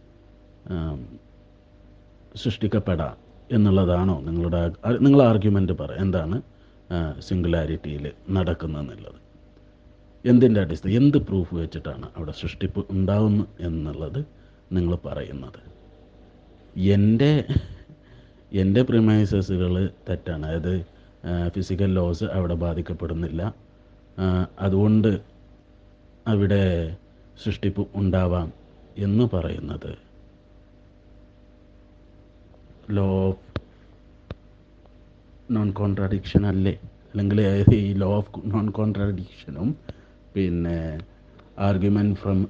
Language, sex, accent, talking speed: Malayalam, male, native, 70 wpm